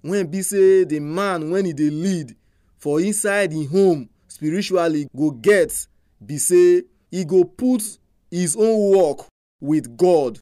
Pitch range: 130-195 Hz